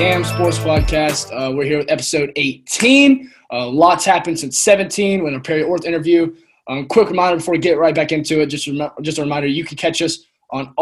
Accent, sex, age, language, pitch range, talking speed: American, male, 20-39, English, 130-165 Hz, 210 wpm